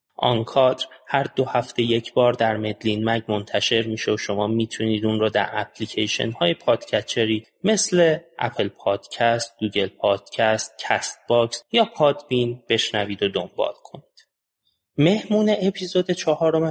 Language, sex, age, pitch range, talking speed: Persian, male, 30-49, 105-155 Hz, 130 wpm